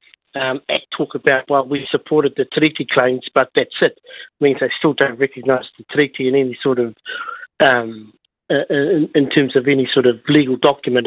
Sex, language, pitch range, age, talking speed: male, English, 135-155 Hz, 50-69, 180 wpm